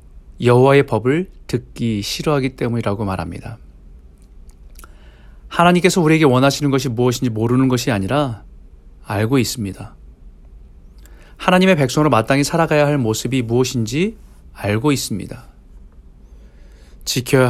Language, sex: Korean, male